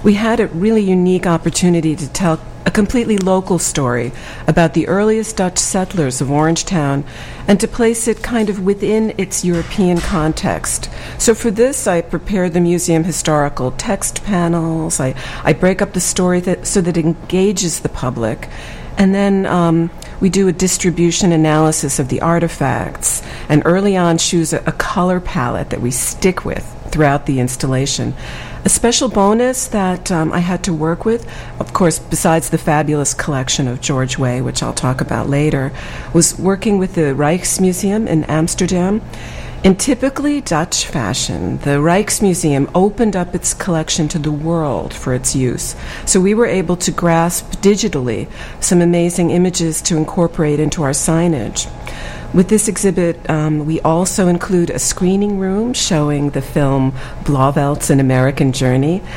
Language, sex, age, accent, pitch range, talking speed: English, female, 50-69, American, 150-190 Hz, 160 wpm